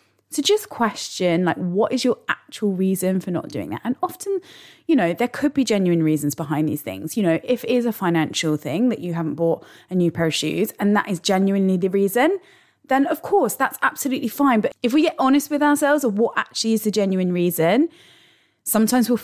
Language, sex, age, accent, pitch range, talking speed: English, female, 20-39, British, 170-240 Hz, 220 wpm